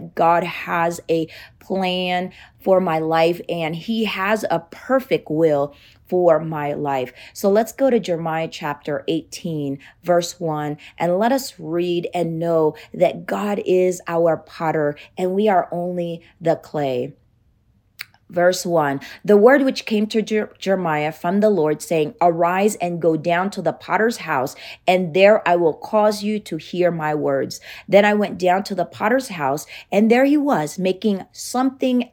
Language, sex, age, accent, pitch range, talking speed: English, female, 30-49, American, 160-200 Hz, 160 wpm